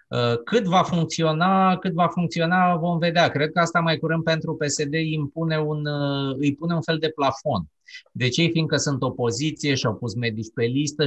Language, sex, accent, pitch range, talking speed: Romanian, male, native, 120-155 Hz, 180 wpm